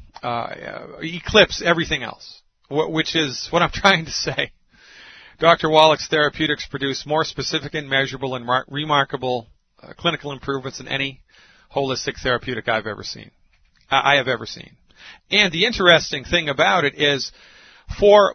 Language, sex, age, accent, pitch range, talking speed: English, male, 40-59, American, 135-160 Hz, 135 wpm